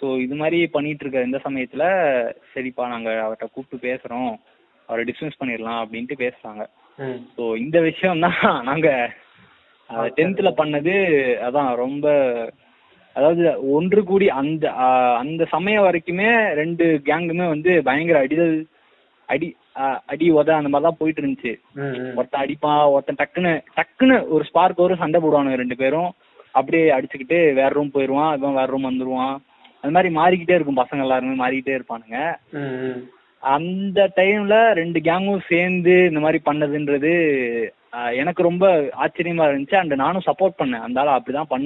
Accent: Indian